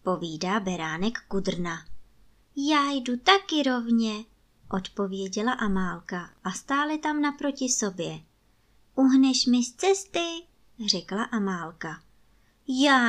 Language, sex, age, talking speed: Czech, male, 20-39, 95 wpm